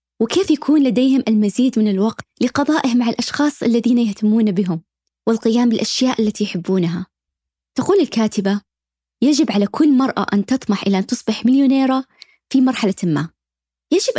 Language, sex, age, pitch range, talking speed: Arabic, female, 20-39, 205-260 Hz, 135 wpm